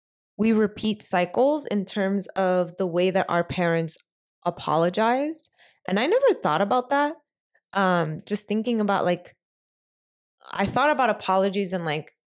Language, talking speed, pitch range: English, 140 wpm, 160-195 Hz